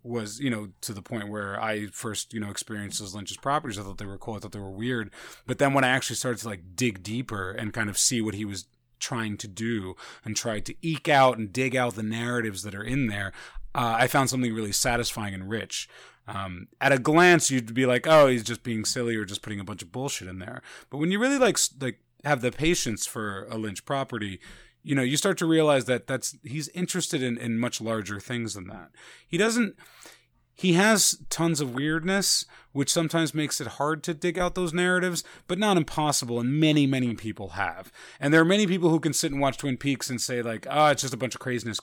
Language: English